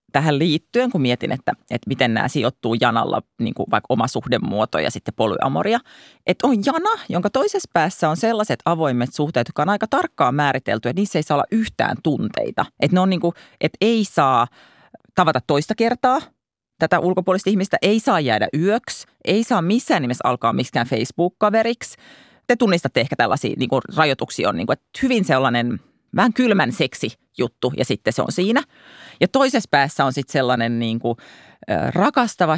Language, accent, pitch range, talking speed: Finnish, native, 140-230 Hz, 170 wpm